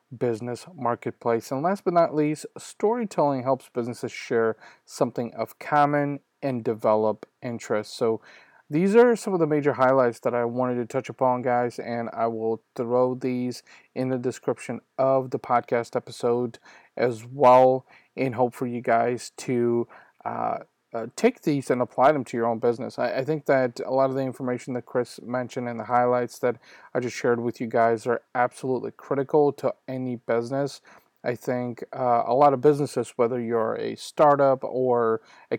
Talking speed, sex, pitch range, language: 175 wpm, male, 120-135 Hz, English